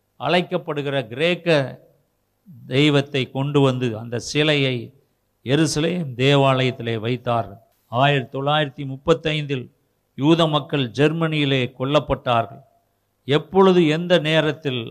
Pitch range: 130-165 Hz